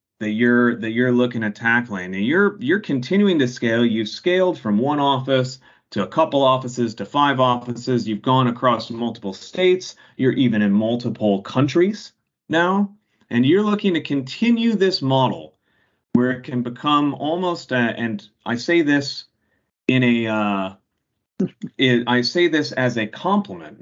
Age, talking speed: 30-49, 155 wpm